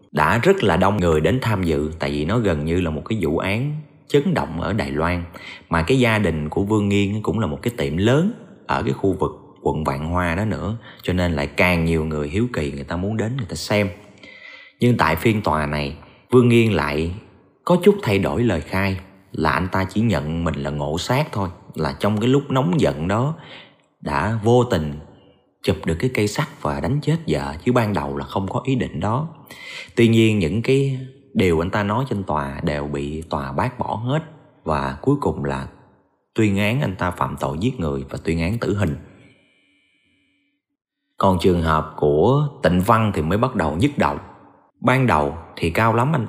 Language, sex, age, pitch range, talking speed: Vietnamese, male, 30-49, 80-125 Hz, 210 wpm